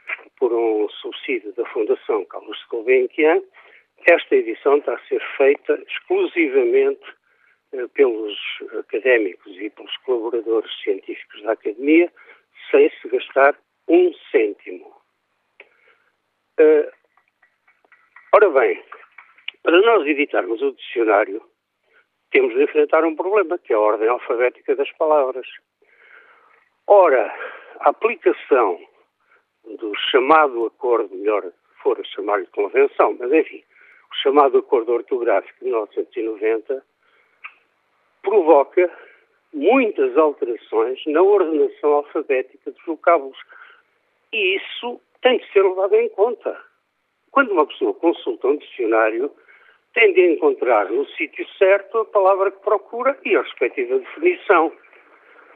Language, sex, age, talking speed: Portuguese, male, 60-79, 110 wpm